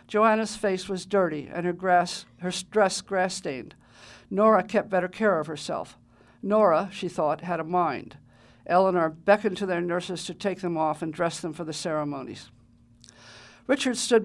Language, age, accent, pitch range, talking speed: English, 50-69, American, 165-210 Hz, 160 wpm